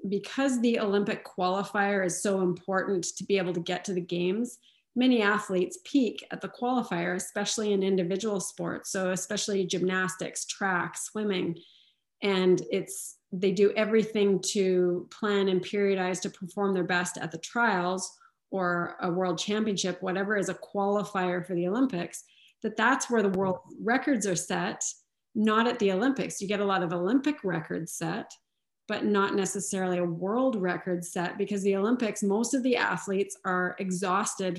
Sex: female